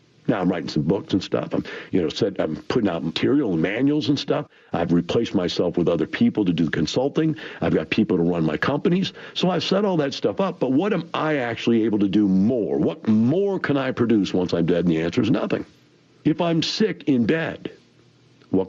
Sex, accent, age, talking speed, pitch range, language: male, American, 50-69, 215 wpm, 95-155 Hz, English